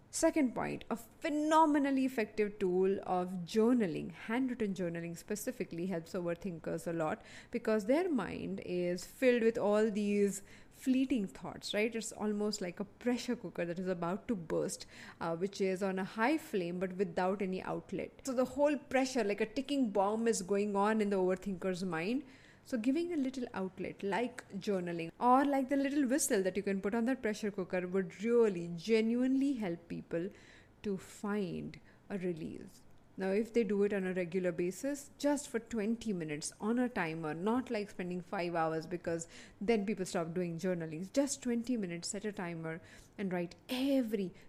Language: English